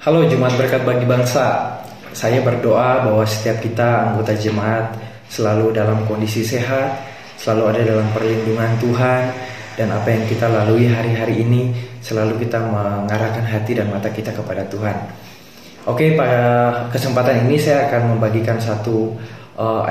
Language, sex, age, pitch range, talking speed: Indonesian, male, 20-39, 110-130 Hz, 140 wpm